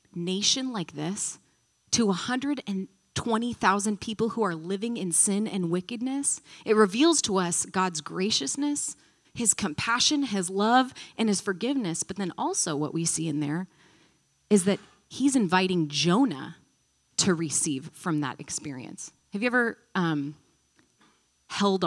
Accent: American